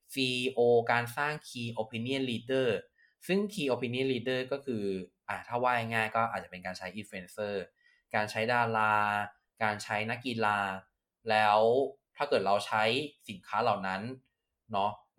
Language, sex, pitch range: Thai, male, 100-125 Hz